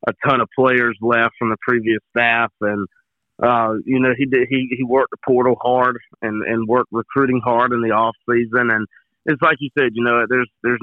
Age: 40-59